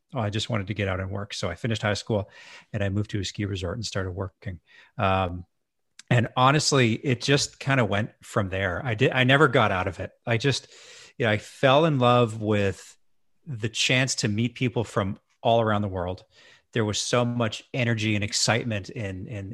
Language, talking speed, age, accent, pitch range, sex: English, 210 wpm, 40-59, American, 95-120 Hz, male